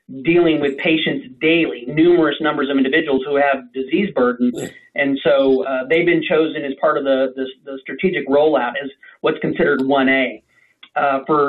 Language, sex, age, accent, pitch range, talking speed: English, male, 40-59, American, 135-160 Hz, 165 wpm